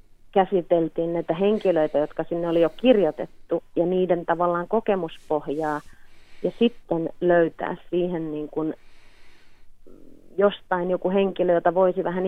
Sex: female